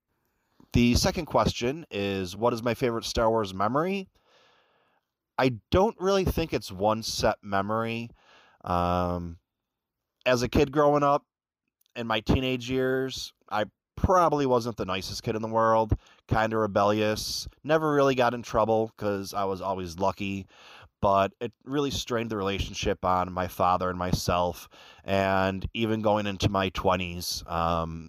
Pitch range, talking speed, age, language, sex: 90-115 Hz, 145 wpm, 20-39, English, male